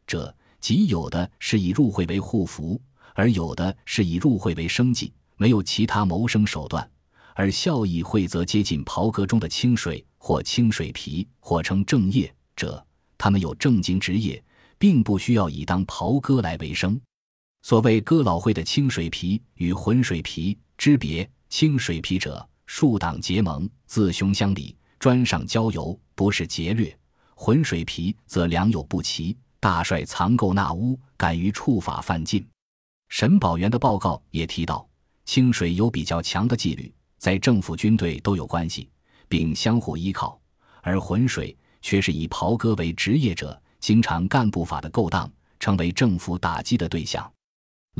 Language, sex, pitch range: Chinese, male, 85-115 Hz